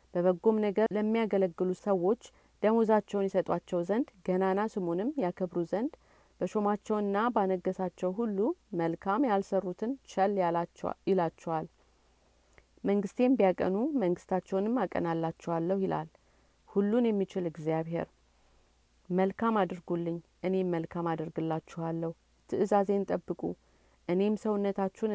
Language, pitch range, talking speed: Amharic, 165-205 Hz, 85 wpm